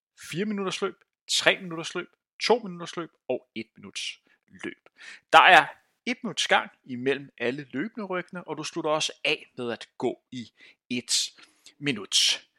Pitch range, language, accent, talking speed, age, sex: 130-195 Hz, Danish, native, 130 wpm, 30-49, male